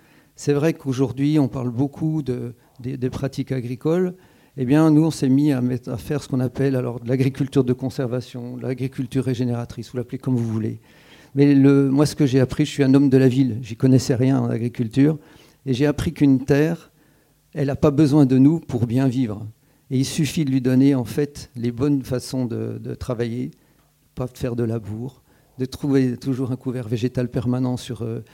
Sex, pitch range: male, 125-145 Hz